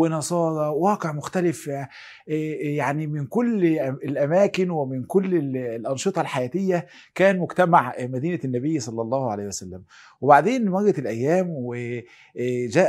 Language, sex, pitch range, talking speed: Arabic, male, 130-175 Hz, 105 wpm